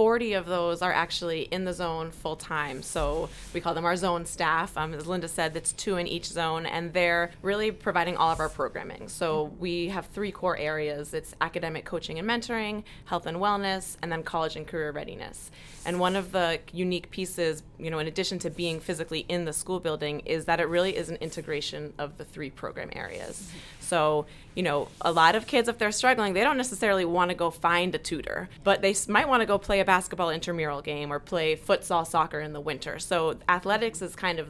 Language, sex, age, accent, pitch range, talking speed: English, female, 20-39, American, 155-190 Hz, 215 wpm